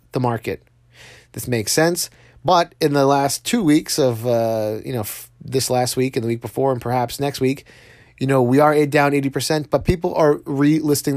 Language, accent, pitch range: English, American, 115-140 Hz